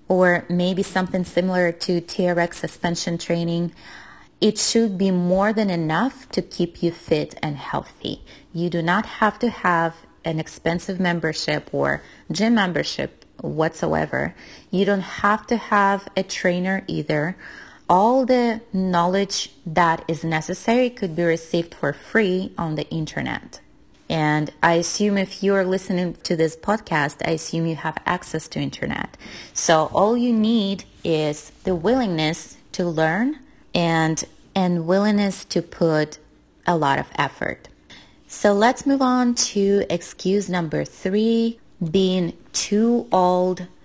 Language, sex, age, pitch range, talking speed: English, female, 30-49, 165-205 Hz, 140 wpm